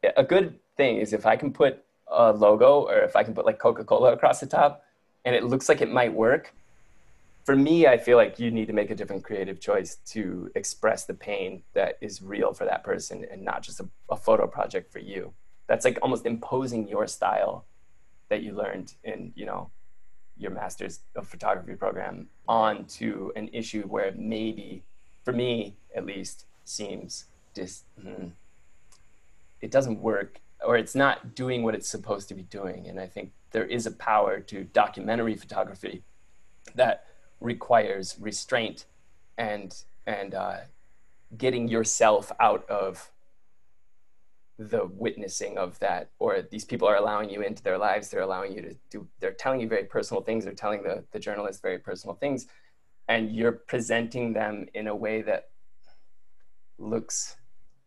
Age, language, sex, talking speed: 20-39, English, male, 165 wpm